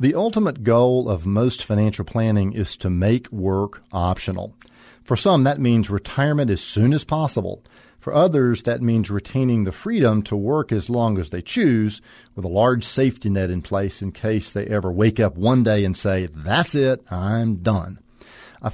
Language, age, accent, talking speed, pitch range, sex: English, 50-69, American, 185 wpm, 100-130 Hz, male